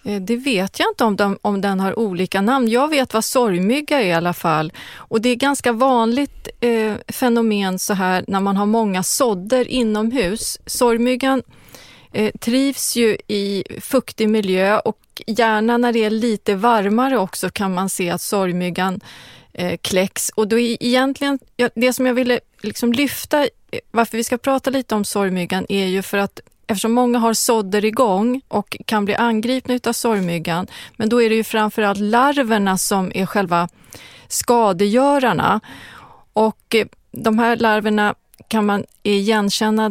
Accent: native